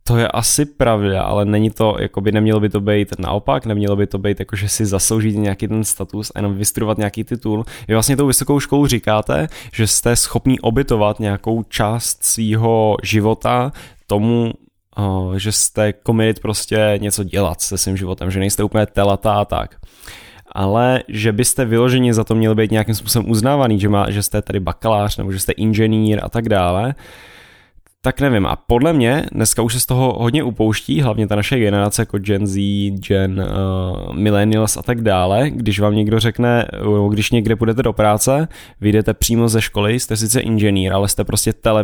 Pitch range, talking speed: 100-115 Hz, 180 wpm